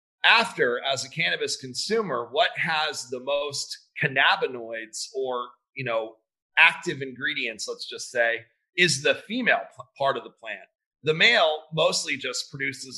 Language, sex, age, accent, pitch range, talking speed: English, male, 30-49, American, 125-155 Hz, 140 wpm